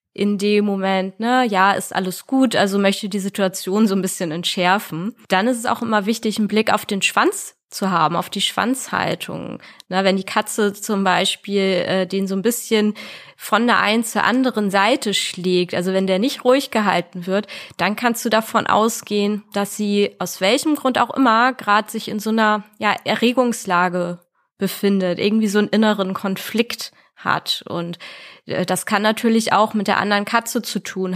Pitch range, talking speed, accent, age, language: 190-225 Hz, 175 wpm, German, 20-39, German